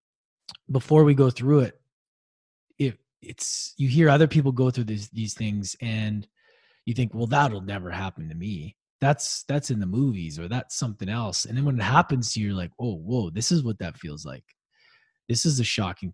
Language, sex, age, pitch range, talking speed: English, male, 20-39, 110-150 Hz, 205 wpm